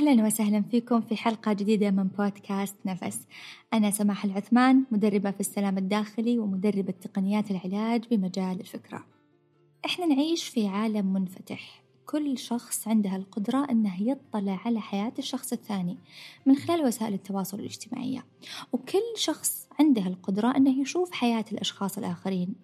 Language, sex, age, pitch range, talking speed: Arabic, female, 20-39, 195-245 Hz, 135 wpm